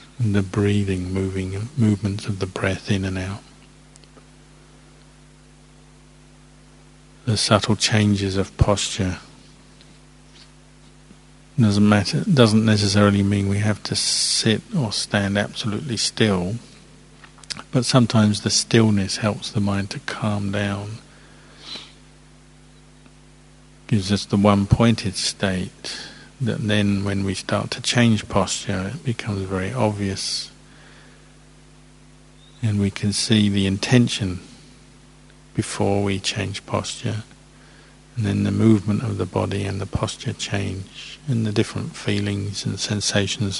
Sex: male